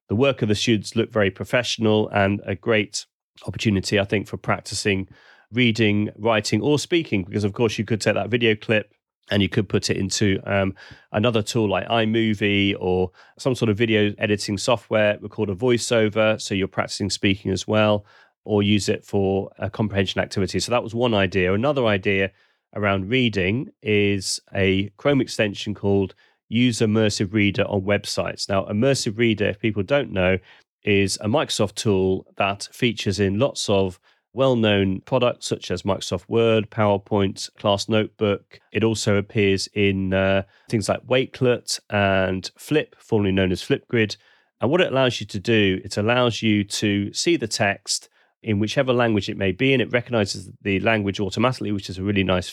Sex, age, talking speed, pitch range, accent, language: male, 30-49, 175 wpm, 100-115 Hz, British, English